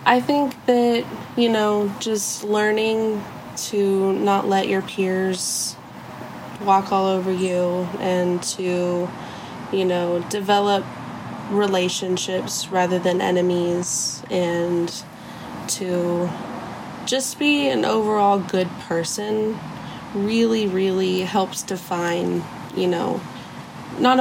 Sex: female